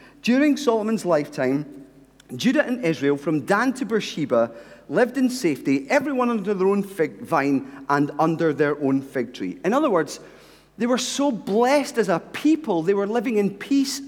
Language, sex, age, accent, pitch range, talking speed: English, male, 40-59, British, 165-275 Hz, 170 wpm